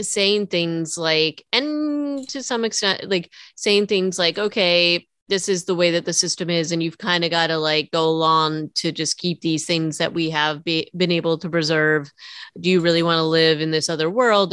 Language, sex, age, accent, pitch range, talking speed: English, female, 30-49, American, 155-180 Hz, 210 wpm